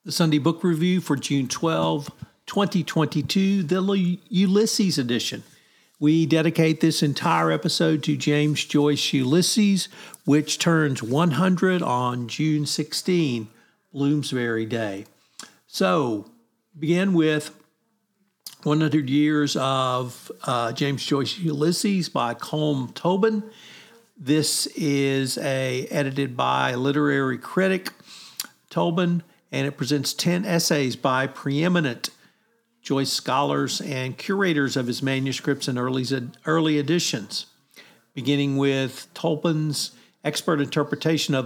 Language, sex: English, male